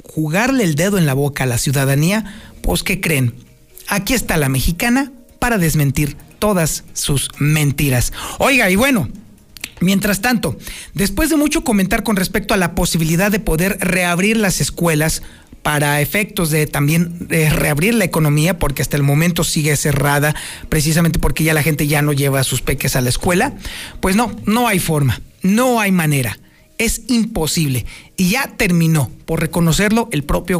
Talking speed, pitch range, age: 165 wpm, 150-205 Hz, 40-59